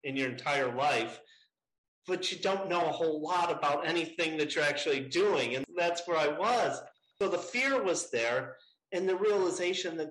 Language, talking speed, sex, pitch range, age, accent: English, 185 wpm, male, 140-195 Hz, 40-59, American